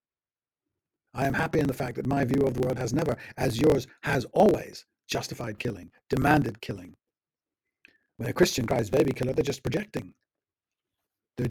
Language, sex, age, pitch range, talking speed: English, male, 50-69, 125-145 Hz, 165 wpm